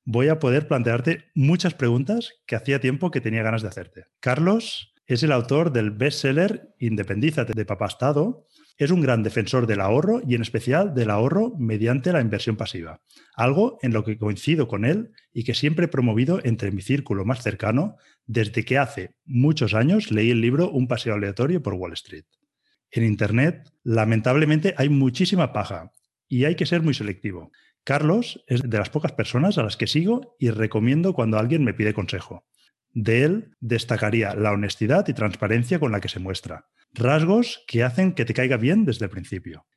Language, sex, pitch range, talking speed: Spanish, male, 110-155 Hz, 180 wpm